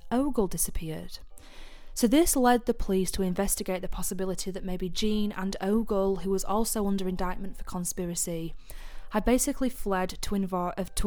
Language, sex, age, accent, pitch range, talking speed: English, female, 10-29, British, 185-220 Hz, 150 wpm